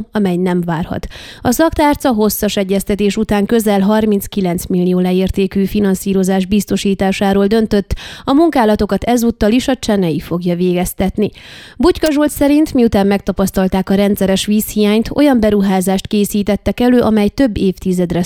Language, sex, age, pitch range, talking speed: Hungarian, female, 20-39, 190-230 Hz, 120 wpm